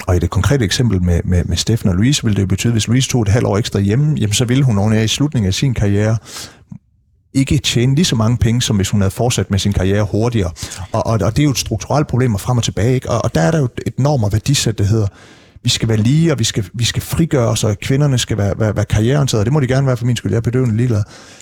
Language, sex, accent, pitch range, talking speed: Danish, male, native, 100-125 Hz, 290 wpm